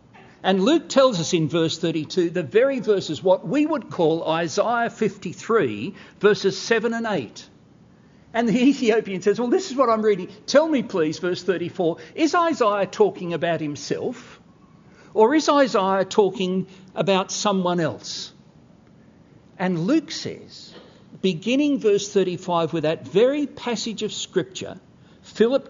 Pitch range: 160-235 Hz